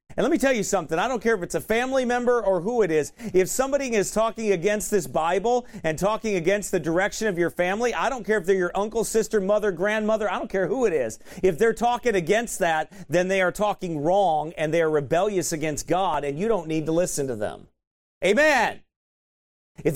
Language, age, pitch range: English, 40-59, 185-275 Hz